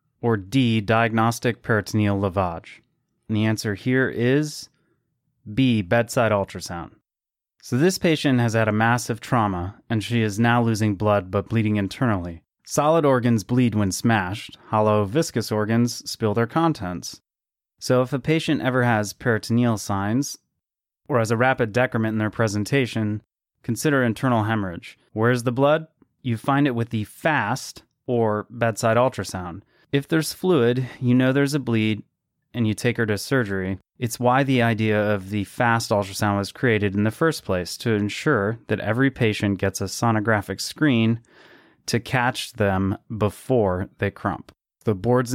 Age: 30-49